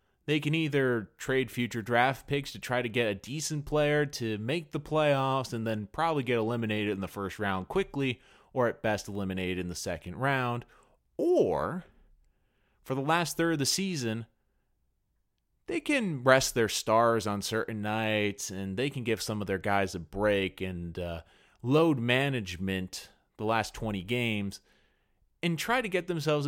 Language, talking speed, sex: English, 170 wpm, male